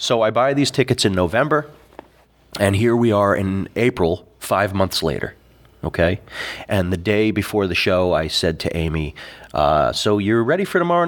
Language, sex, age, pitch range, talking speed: English, male, 30-49, 90-120 Hz, 180 wpm